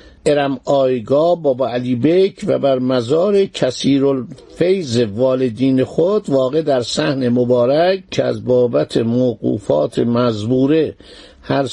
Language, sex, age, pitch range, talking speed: Persian, male, 60-79, 120-150 Hz, 115 wpm